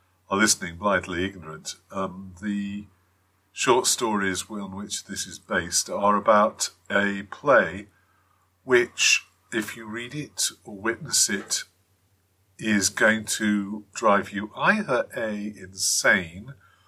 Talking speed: 115 wpm